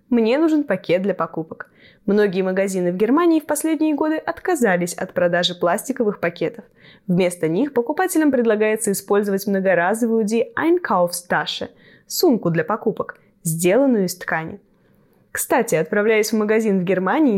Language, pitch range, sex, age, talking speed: Russian, 190-295 Hz, female, 10-29, 130 wpm